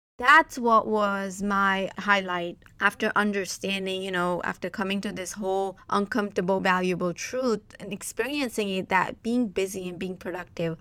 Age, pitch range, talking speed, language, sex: 20-39, 180-215 Hz, 145 wpm, English, female